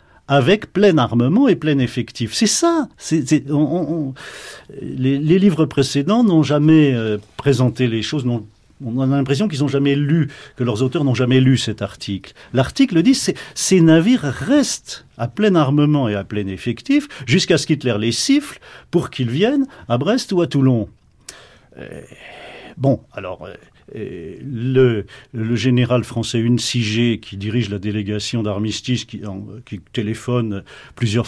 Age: 50-69